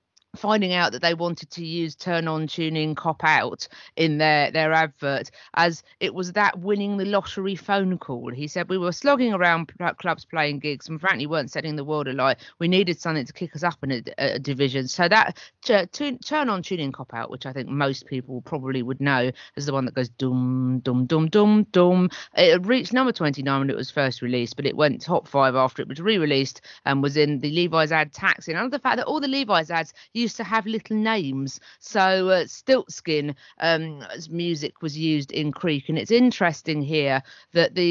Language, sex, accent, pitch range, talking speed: English, female, British, 145-180 Hz, 215 wpm